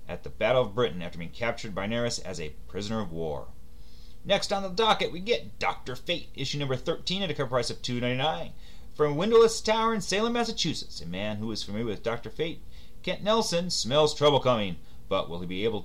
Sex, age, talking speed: male, 40-59, 220 wpm